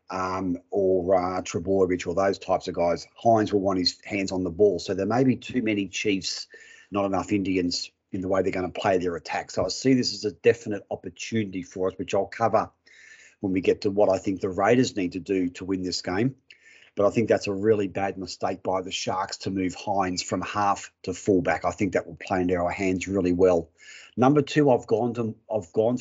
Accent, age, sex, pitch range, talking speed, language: Australian, 40-59, male, 95-115 Hz, 230 wpm, English